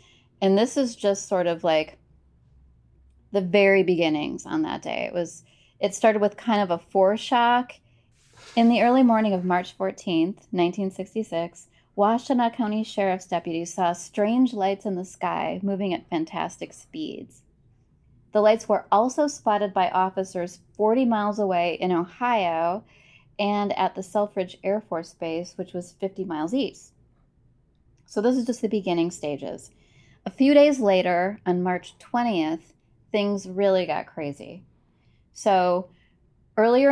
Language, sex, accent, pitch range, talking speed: English, female, American, 170-210 Hz, 145 wpm